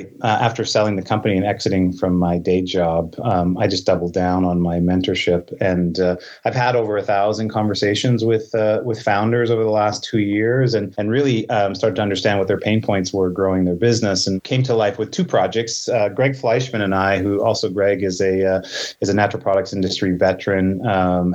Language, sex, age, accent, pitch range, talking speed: English, male, 30-49, American, 95-110 Hz, 215 wpm